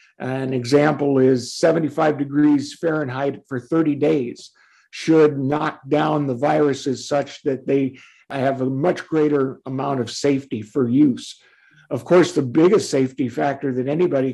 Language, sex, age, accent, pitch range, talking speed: English, male, 50-69, American, 140-165 Hz, 140 wpm